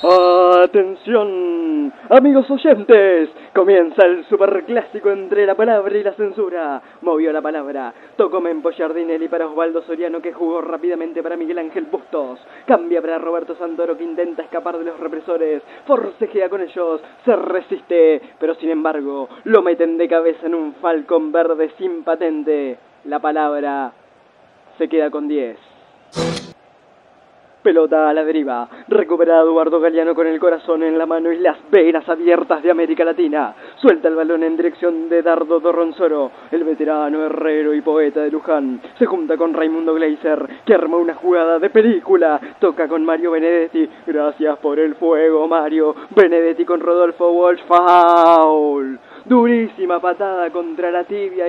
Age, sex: 20-39, male